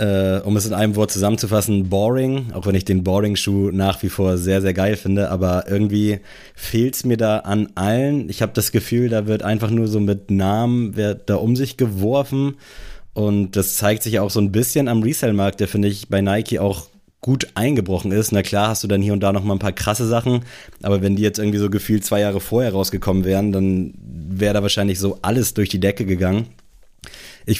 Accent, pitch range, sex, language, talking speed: German, 100-115 Hz, male, German, 215 wpm